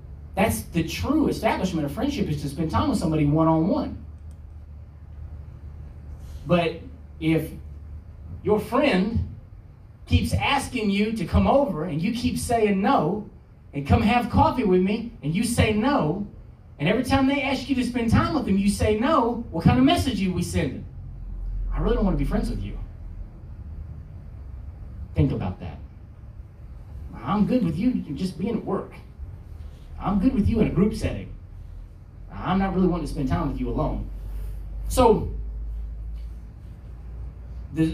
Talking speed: 155 wpm